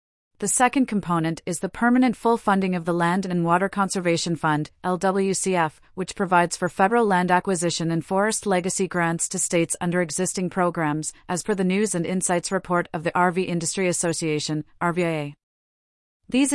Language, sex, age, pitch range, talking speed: English, female, 30-49, 170-200 Hz, 165 wpm